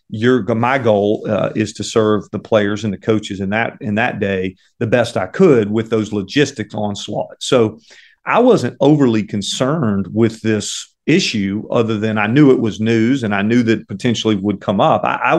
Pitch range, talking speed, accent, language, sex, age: 100-125 Hz, 195 wpm, American, English, male, 40-59